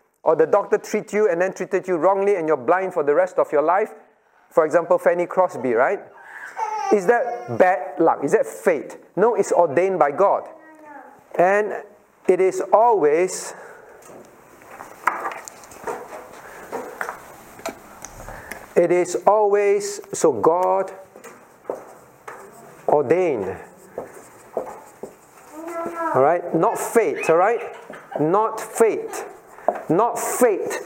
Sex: male